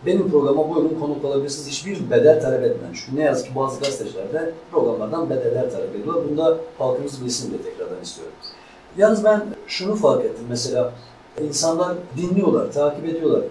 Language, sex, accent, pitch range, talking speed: Turkish, male, native, 150-245 Hz, 155 wpm